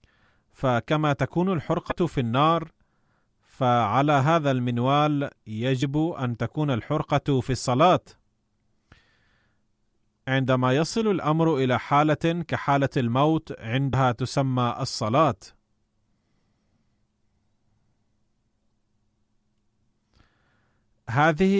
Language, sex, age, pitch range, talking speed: Arabic, male, 30-49, 110-150 Hz, 70 wpm